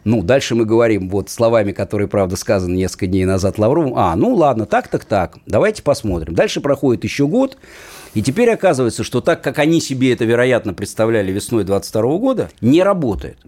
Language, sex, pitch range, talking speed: Russian, male, 105-135 Hz, 175 wpm